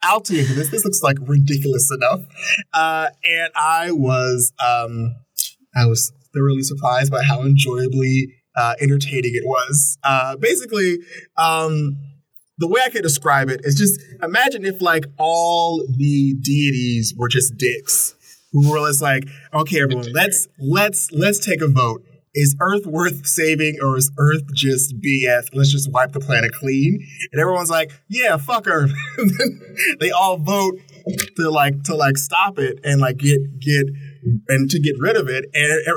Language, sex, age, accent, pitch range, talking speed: English, male, 20-39, American, 135-170 Hz, 160 wpm